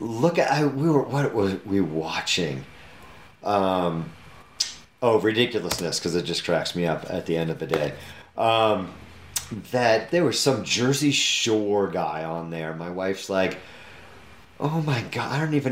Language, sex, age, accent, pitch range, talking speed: English, male, 30-49, American, 85-125 Hz, 165 wpm